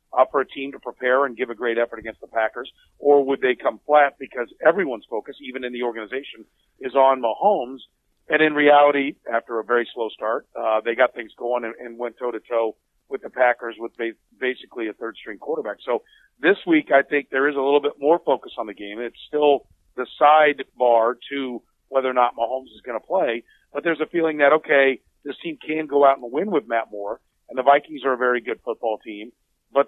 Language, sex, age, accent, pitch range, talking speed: English, male, 40-59, American, 125-155 Hz, 215 wpm